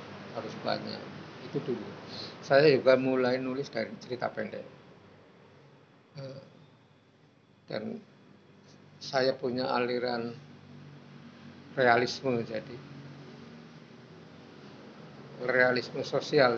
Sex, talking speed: male, 70 wpm